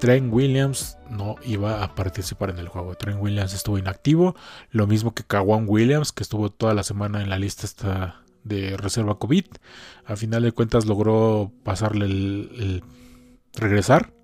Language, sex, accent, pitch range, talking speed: Spanish, male, Mexican, 100-125 Hz, 160 wpm